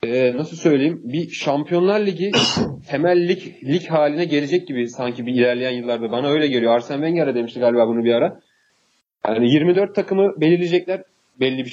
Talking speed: 160 wpm